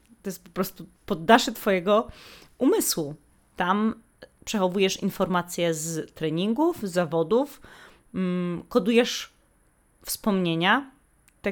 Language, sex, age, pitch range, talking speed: Polish, female, 20-39, 180-235 Hz, 85 wpm